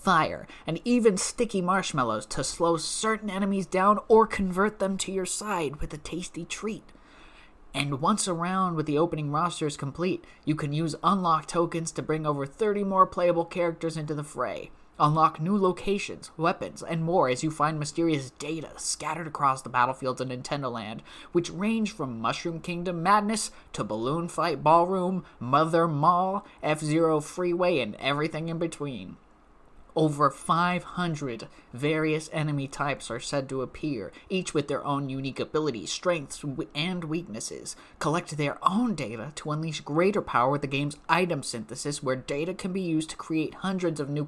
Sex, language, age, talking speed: male, English, 20-39, 165 wpm